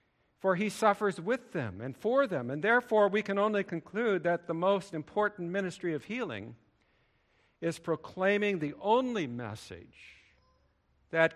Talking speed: 145 wpm